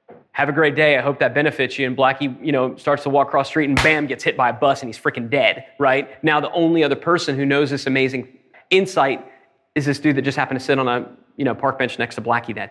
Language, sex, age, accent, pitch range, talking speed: English, male, 30-49, American, 135-170 Hz, 275 wpm